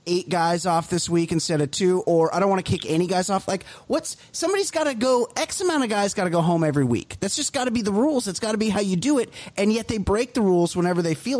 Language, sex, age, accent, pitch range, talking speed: English, male, 30-49, American, 140-220 Hz, 300 wpm